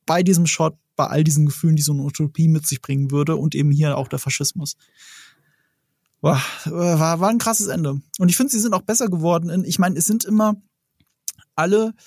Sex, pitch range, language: male, 155-200 Hz, German